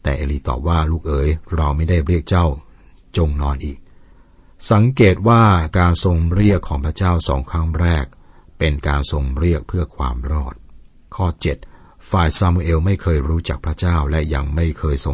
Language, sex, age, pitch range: Thai, male, 60-79, 70-90 Hz